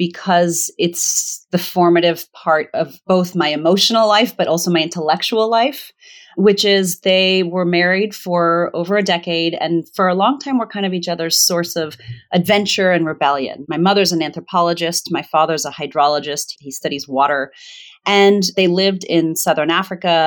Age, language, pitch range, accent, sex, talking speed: 30-49, English, 160-195 Hz, American, female, 165 wpm